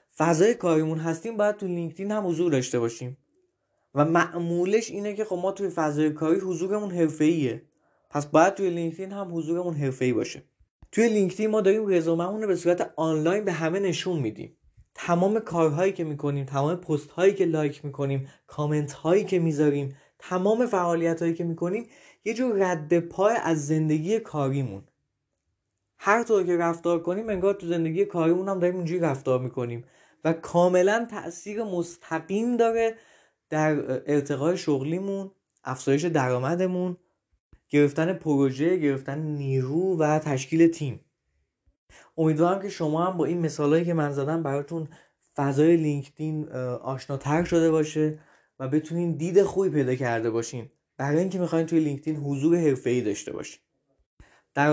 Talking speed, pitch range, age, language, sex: 140 wpm, 145-180 Hz, 20-39, Persian, male